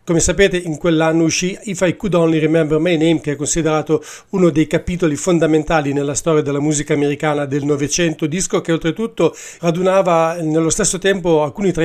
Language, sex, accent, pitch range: English, male, Italian, 155-175 Hz